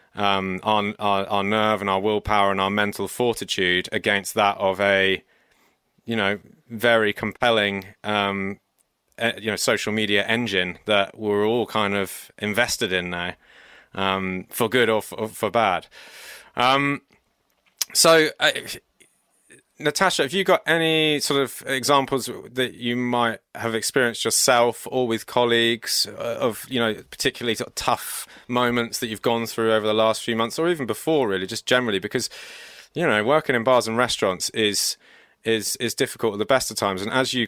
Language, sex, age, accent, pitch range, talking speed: English, male, 20-39, British, 100-120 Hz, 165 wpm